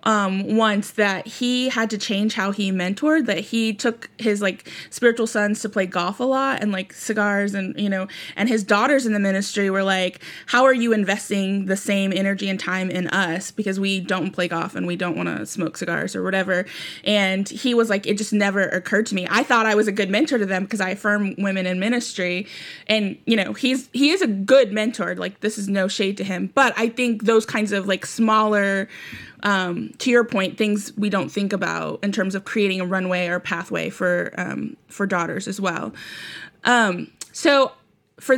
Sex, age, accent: female, 20-39, American